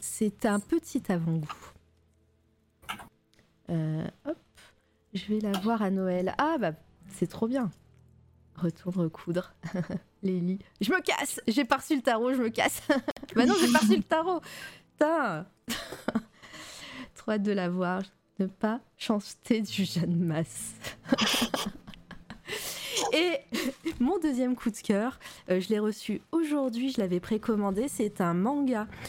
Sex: female